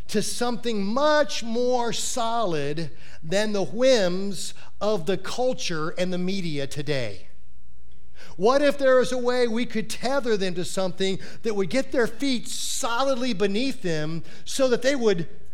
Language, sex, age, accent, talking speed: English, male, 40-59, American, 150 wpm